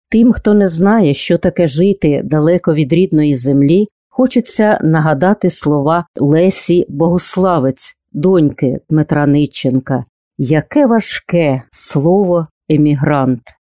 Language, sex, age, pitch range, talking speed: Ukrainian, female, 40-59, 155-195 Hz, 100 wpm